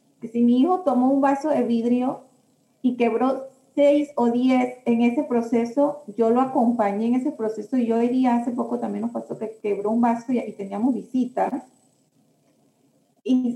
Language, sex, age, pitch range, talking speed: Spanish, female, 30-49, 215-260 Hz, 175 wpm